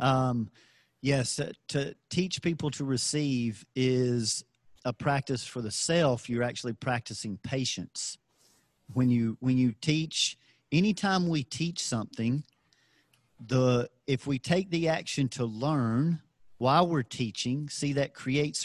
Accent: American